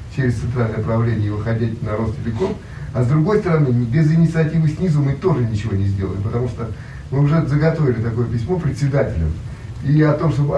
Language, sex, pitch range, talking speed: Russian, male, 115-145 Hz, 175 wpm